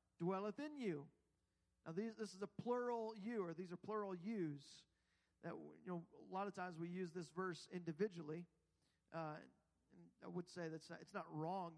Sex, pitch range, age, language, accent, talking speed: male, 160-215 Hz, 40-59, English, American, 185 wpm